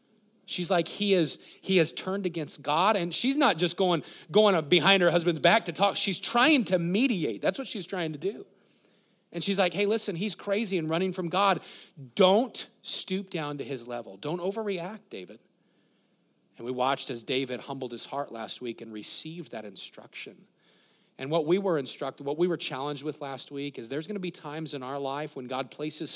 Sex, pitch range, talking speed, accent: male, 125-175 Hz, 200 wpm, American